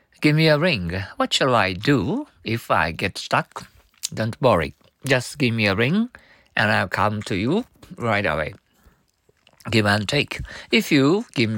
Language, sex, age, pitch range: Japanese, male, 50-69, 105-135 Hz